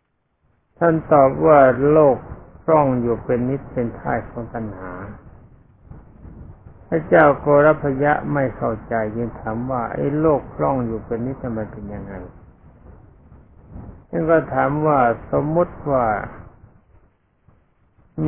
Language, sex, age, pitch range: Thai, male, 60-79, 105-135 Hz